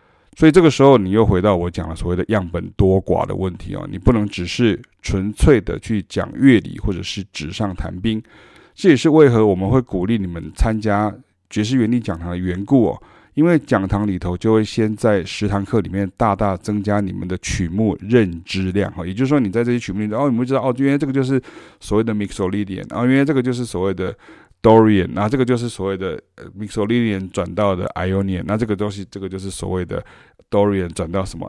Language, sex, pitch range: Chinese, male, 95-115 Hz